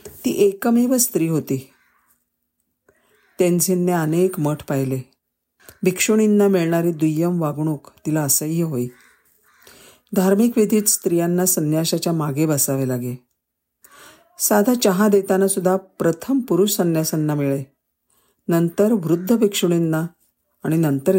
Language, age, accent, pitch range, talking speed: Marathi, 50-69, native, 155-205 Hz, 100 wpm